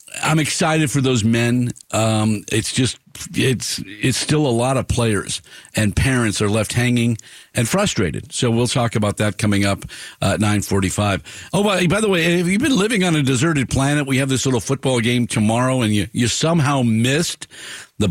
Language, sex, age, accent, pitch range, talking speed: English, male, 50-69, American, 110-140 Hz, 195 wpm